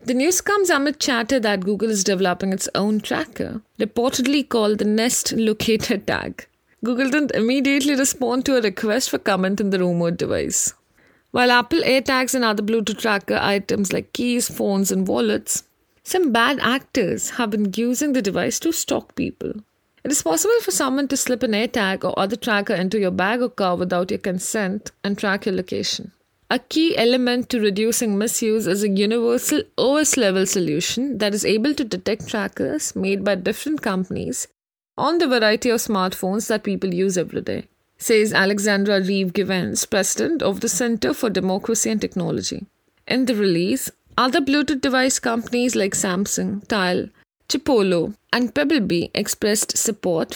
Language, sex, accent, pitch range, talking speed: English, female, Indian, 195-255 Hz, 160 wpm